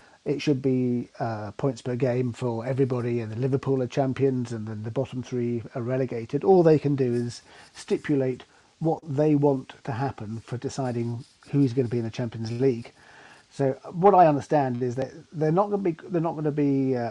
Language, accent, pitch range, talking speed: English, British, 125-145 Hz, 205 wpm